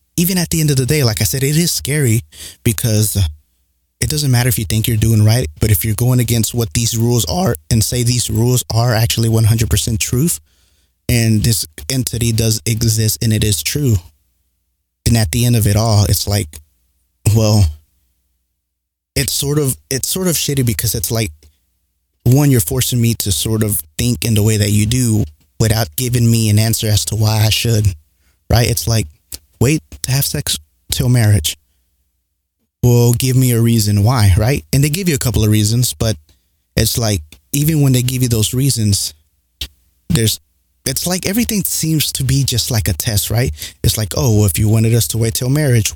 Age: 20-39